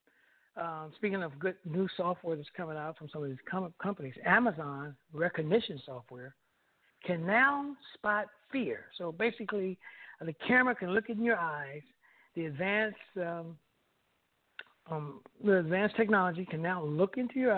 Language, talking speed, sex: English, 135 wpm, male